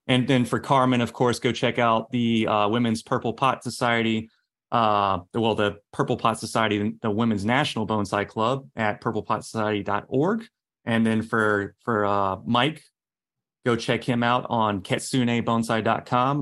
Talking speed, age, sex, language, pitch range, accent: 145 wpm, 30-49, male, English, 110-125 Hz, American